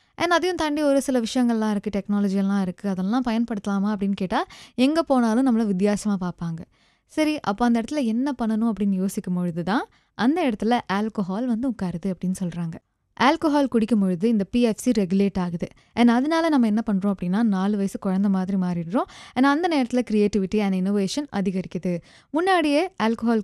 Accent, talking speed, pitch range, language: native, 155 wpm, 195-255 Hz, Tamil